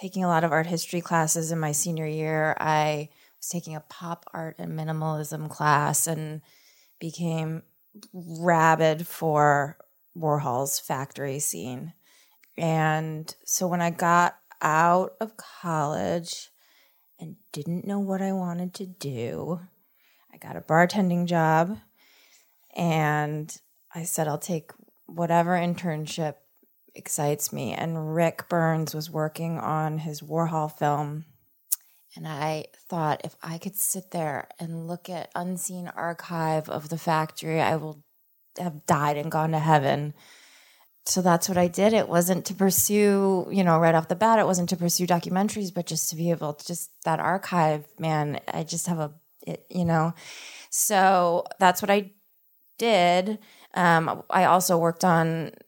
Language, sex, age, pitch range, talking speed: English, female, 20-39, 155-180 Hz, 145 wpm